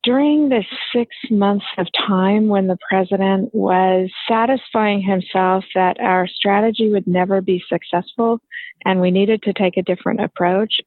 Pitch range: 185-220 Hz